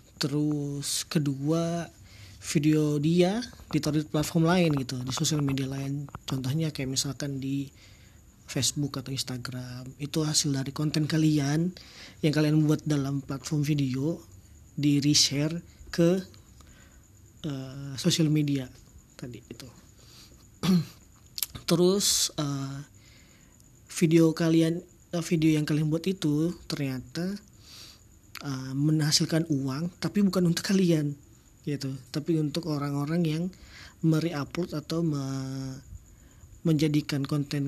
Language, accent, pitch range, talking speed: Indonesian, native, 130-160 Hz, 105 wpm